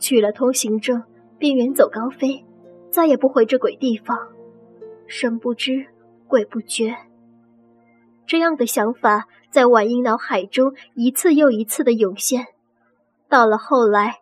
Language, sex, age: Chinese, male, 20-39